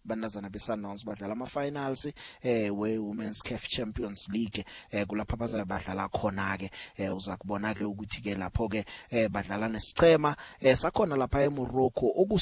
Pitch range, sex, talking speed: 105-140 Hz, male, 145 wpm